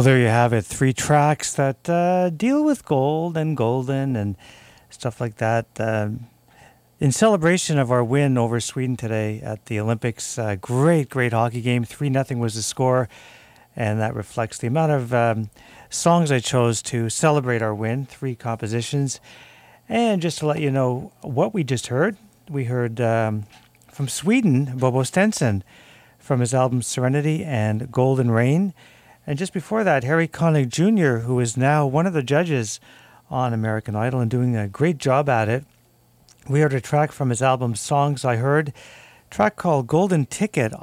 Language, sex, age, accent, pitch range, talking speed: English, male, 50-69, American, 120-160 Hz, 175 wpm